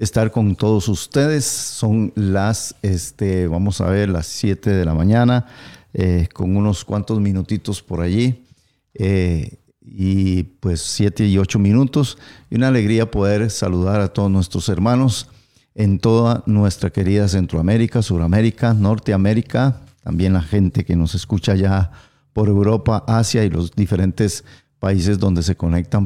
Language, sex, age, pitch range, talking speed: Spanish, male, 50-69, 95-120 Hz, 145 wpm